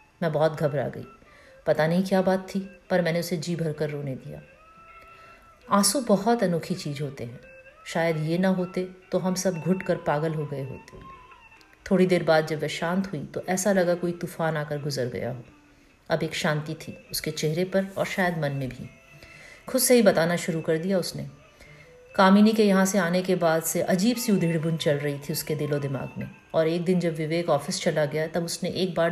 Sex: female